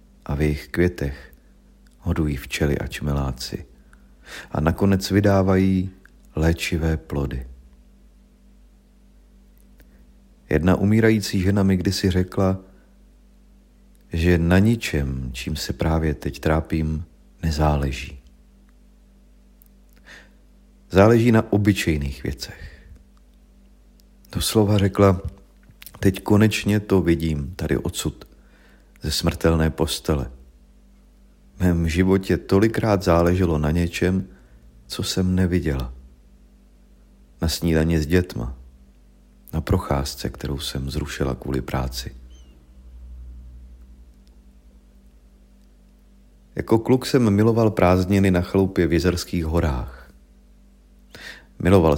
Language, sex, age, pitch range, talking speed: Czech, male, 40-59, 65-90 Hz, 85 wpm